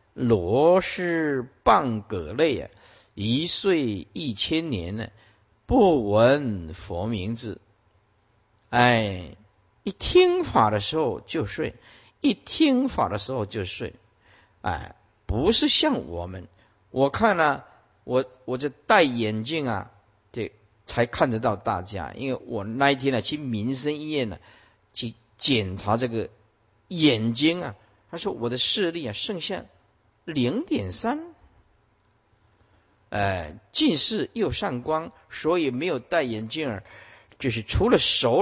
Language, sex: Chinese, male